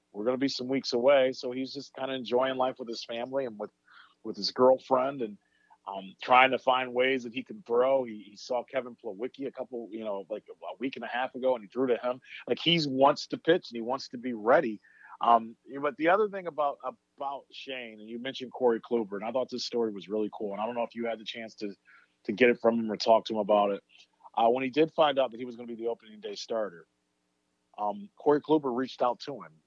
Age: 40-59